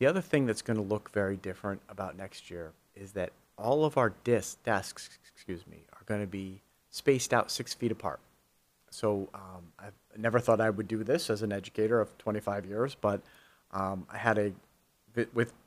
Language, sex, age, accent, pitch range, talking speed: English, male, 40-59, American, 100-115 Hz, 185 wpm